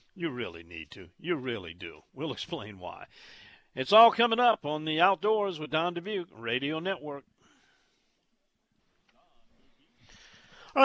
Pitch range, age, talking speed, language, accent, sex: 100-140 Hz, 50-69, 125 wpm, English, American, male